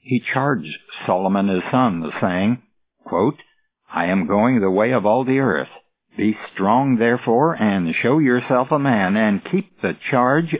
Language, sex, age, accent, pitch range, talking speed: English, male, 60-79, American, 110-150 Hz, 155 wpm